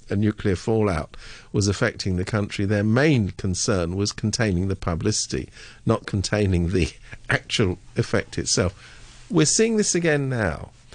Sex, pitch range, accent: male, 100-140 Hz, British